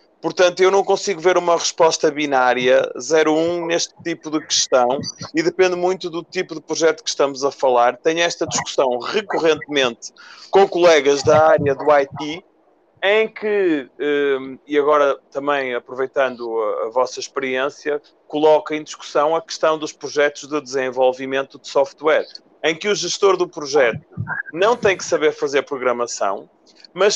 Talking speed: 150 wpm